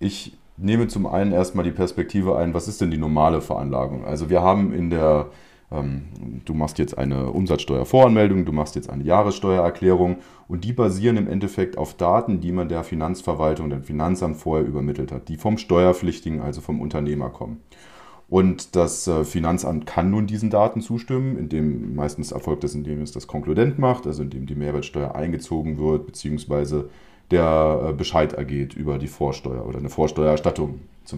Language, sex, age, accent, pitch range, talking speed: German, male, 30-49, German, 75-105 Hz, 165 wpm